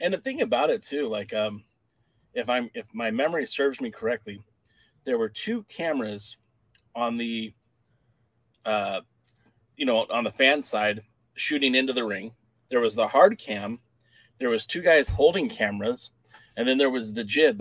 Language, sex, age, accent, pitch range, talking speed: English, male, 30-49, American, 120-200 Hz, 170 wpm